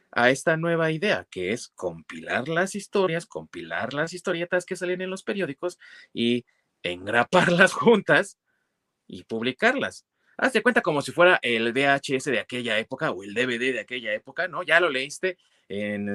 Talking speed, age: 160 wpm, 30-49